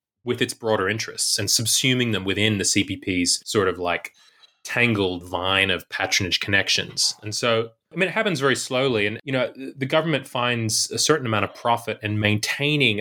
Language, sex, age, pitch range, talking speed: English, male, 20-39, 100-125 Hz, 180 wpm